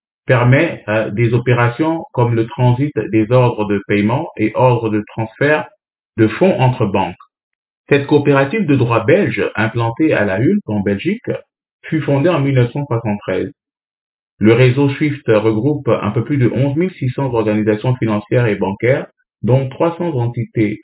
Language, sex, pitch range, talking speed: French, male, 105-140 Hz, 145 wpm